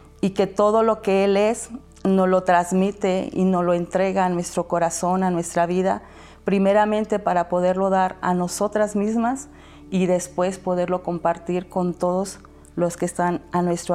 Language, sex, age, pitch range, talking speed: Spanish, female, 40-59, 170-190 Hz, 165 wpm